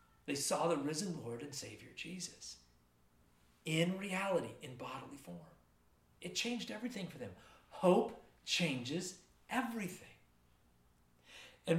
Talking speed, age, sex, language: 110 wpm, 40-59, male, English